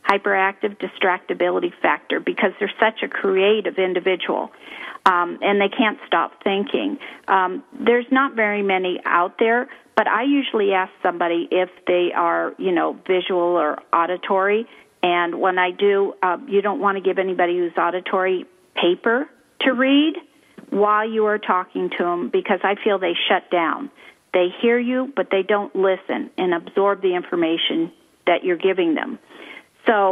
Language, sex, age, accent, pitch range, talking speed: English, female, 50-69, American, 185-230 Hz, 155 wpm